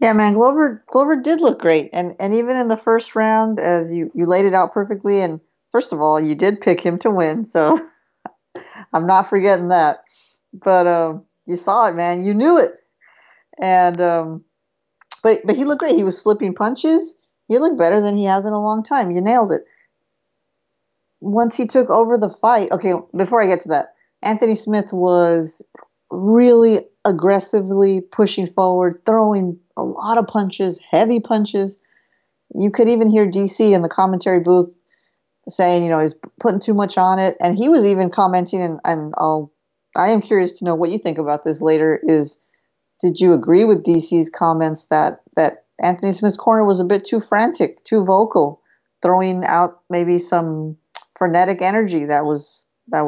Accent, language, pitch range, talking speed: American, English, 175-220 Hz, 180 wpm